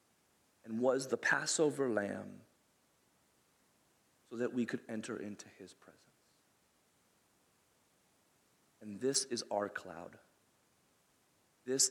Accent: American